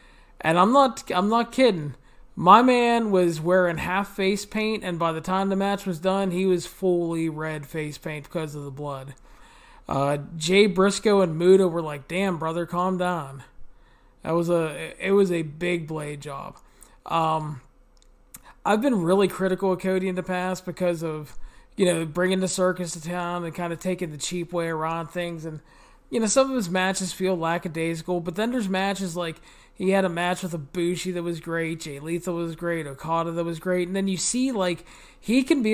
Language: English